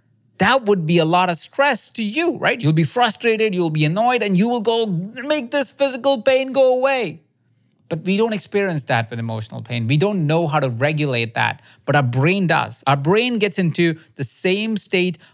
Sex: male